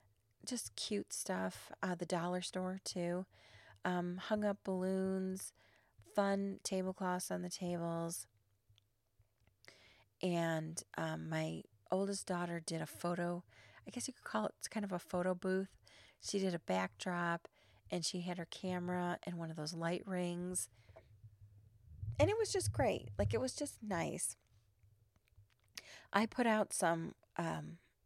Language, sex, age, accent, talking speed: English, female, 40-59, American, 140 wpm